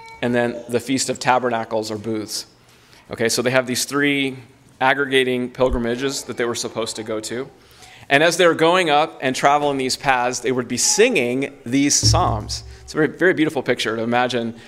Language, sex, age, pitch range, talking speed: English, male, 30-49, 115-135 Hz, 190 wpm